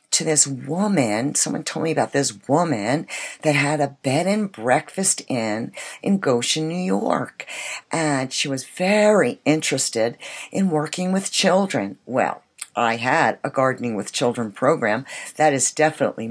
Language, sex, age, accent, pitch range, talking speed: English, female, 60-79, American, 125-160 Hz, 145 wpm